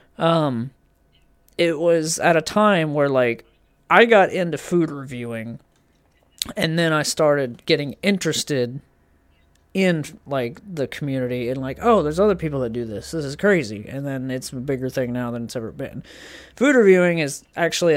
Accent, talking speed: American, 165 wpm